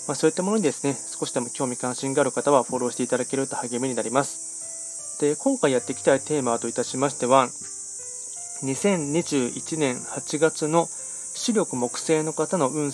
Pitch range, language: 120-155 Hz, Japanese